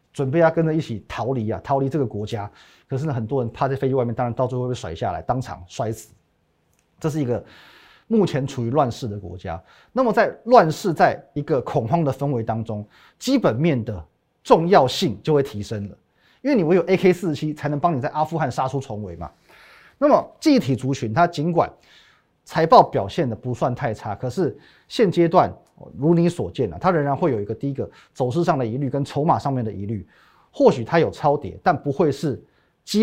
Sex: male